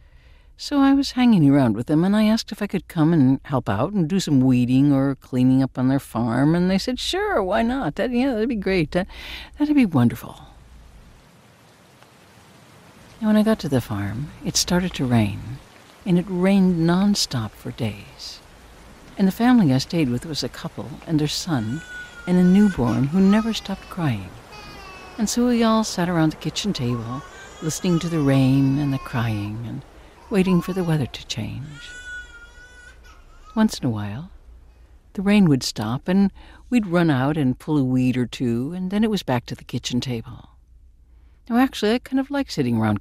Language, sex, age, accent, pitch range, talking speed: English, female, 60-79, American, 120-200 Hz, 190 wpm